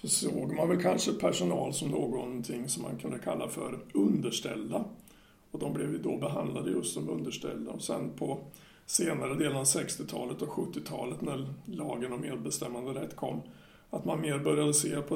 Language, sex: Swedish, male